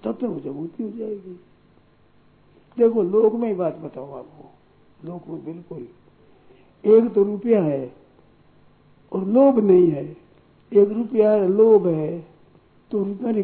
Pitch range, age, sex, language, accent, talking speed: 175-230 Hz, 60-79, male, Hindi, native, 130 wpm